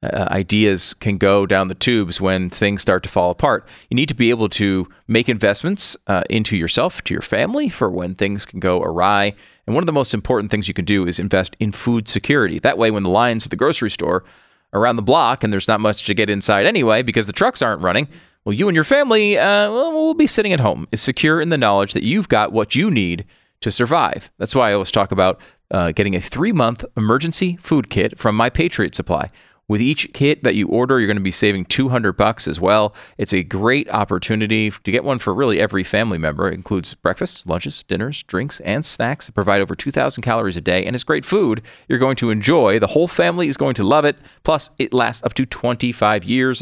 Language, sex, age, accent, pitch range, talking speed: English, male, 30-49, American, 100-130 Hz, 230 wpm